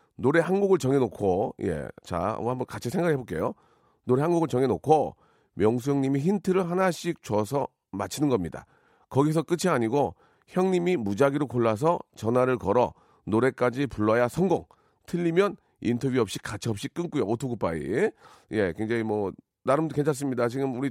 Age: 40-59